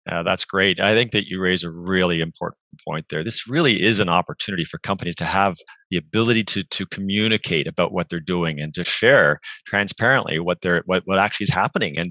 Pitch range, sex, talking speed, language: 85-105 Hz, male, 215 wpm, English